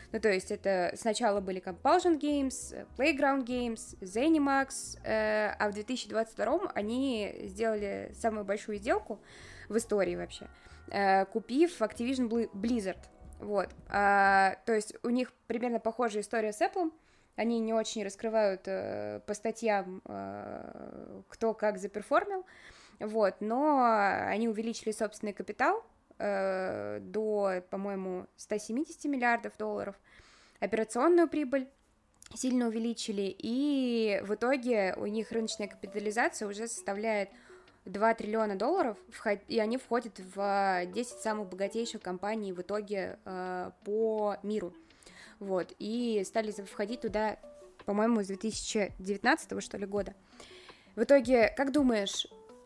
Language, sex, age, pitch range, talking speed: Russian, female, 20-39, 200-240 Hz, 115 wpm